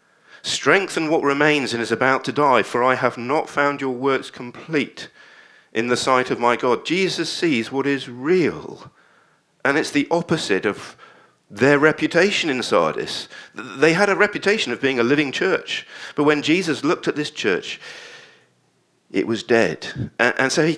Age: 50-69